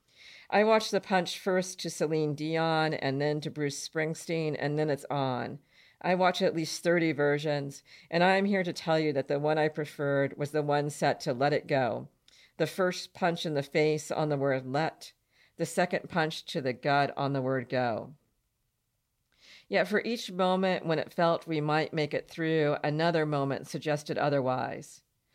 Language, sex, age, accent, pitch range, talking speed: English, female, 50-69, American, 140-170 Hz, 185 wpm